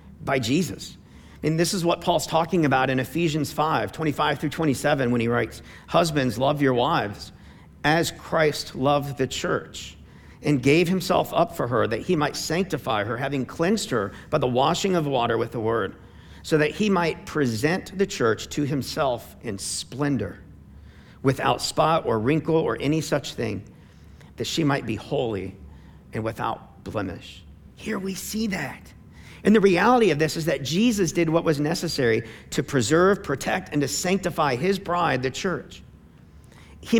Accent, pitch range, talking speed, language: American, 110-165 Hz, 165 wpm, English